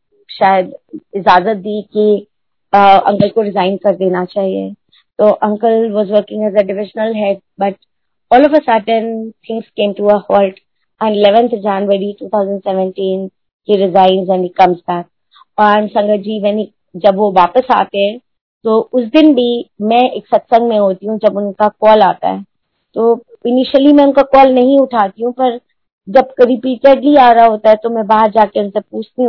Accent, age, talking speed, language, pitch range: native, 20-39, 145 wpm, Hindi, 205-255 Hz